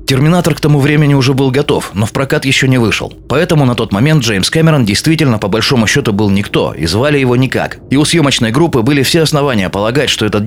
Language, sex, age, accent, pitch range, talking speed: Russian, male, 20-39, native, 110-150 Hz, 225 wpm